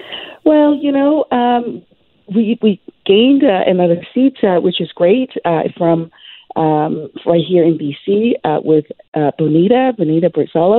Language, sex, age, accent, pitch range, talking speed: English, female, 40-59, American, 165-205 Hz, 150 wpm